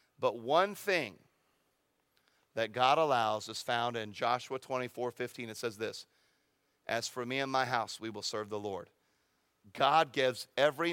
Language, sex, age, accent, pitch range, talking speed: English, male, 40-59, American, 175-295 Hz, 160 wpm